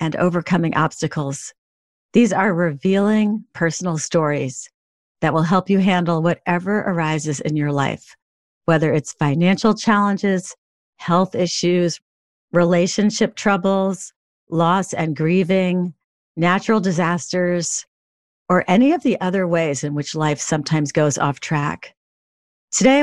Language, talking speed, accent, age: English, 115 wpm, American, 50-69